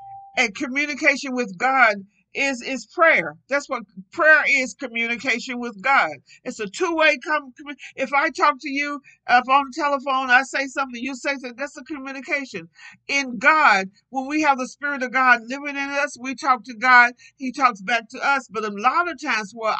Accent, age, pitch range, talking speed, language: American, 50-69, 210-275 Hz, 190 wpm, English